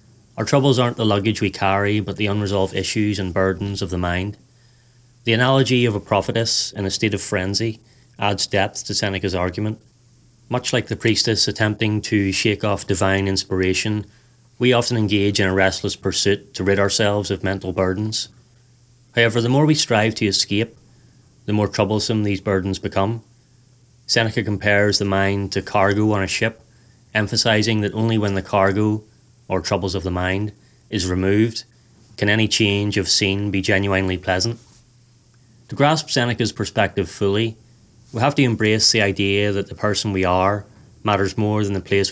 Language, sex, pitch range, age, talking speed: English, male, 100-115 Hz, 30-49, 170 wpm